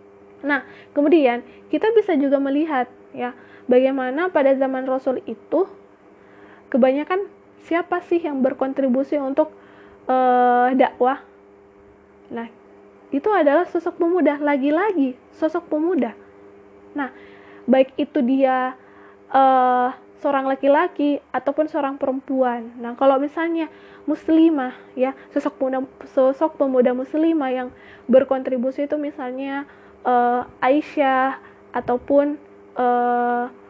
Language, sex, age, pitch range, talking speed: Indonesian, female, 20-39, 245-295 Hz, 100 wpm